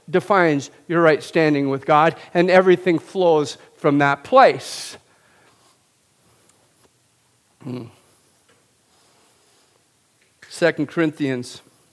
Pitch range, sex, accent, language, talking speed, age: 145-195 Hz, male, American, English, 70 wpm, 50-69